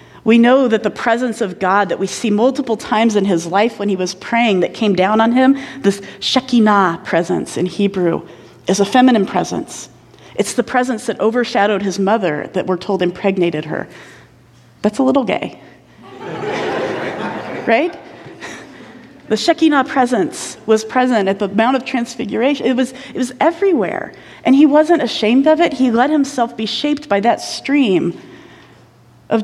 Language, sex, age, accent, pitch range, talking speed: English, female, 40-59, American, 195-255 Hz, 160 wpm